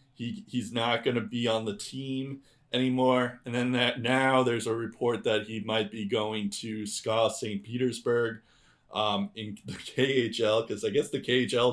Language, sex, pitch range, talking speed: English, male, 110-130 Hz, 180 wpm